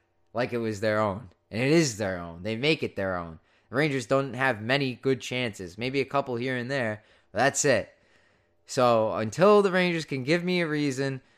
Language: English